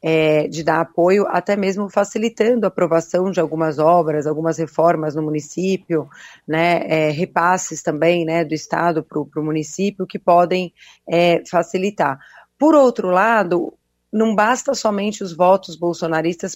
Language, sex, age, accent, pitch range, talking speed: Portuguese, female, 30-49, Brazilian, 165-195 Hz, 130 wpm